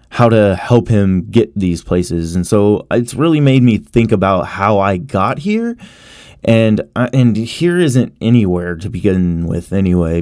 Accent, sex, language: American, male, English